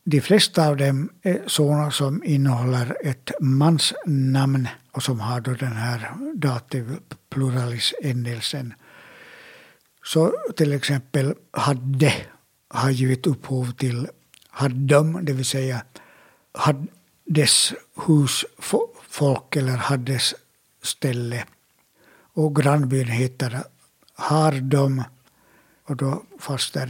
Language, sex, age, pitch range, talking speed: Swedish, male, 60-79, 130-150 Hz, 100 wpm